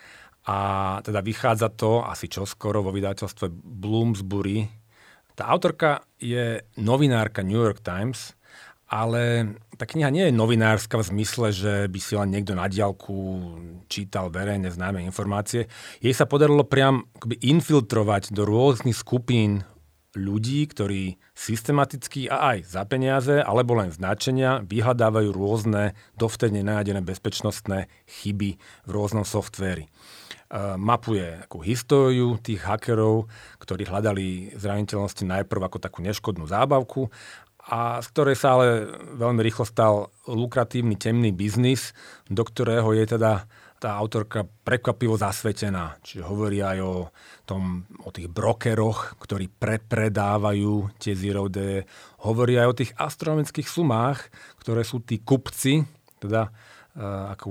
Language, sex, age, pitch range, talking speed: Slovak, male, 40-59, 100-120 Hz, 120 wpm